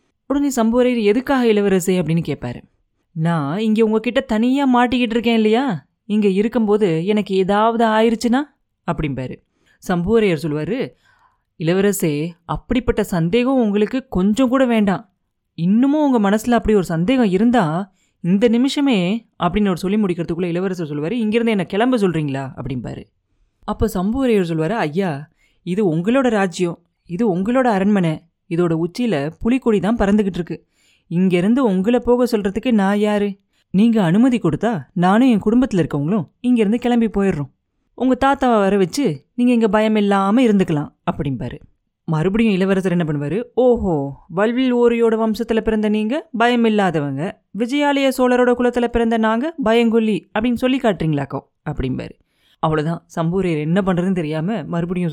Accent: native